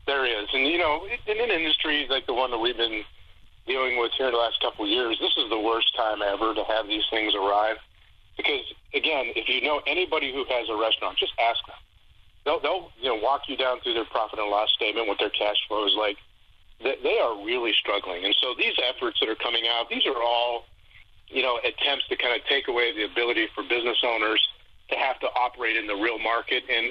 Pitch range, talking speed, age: 105-135 Hz, 230 wpm, 40-59